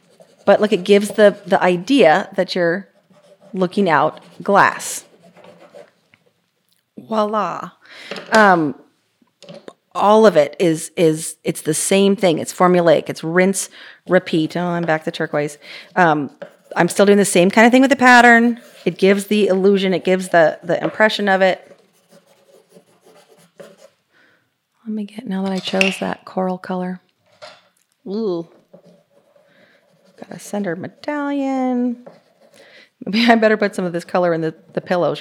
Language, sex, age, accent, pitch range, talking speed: English, female, 30-49, American, 175-210 Hz, 140 wpm